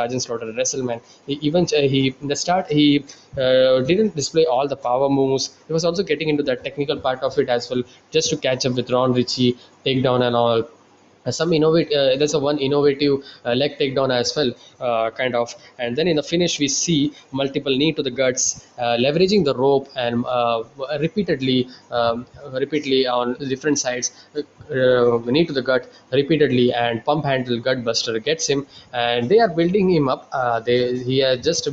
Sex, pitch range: male, 125-145 Hz